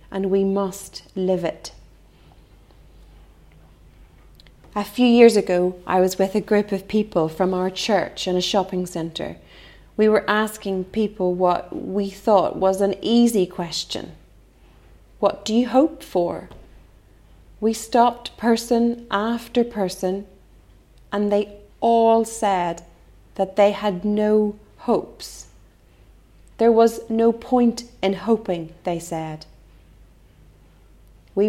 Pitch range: 170-215 Hz